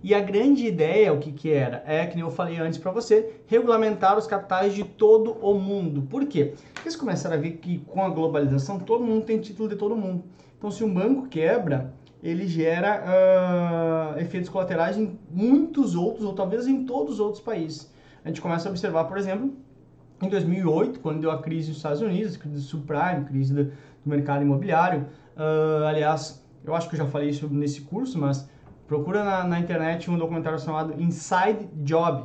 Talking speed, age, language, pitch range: 195 wpm, 20-39, Portuguese, 150-200 Hz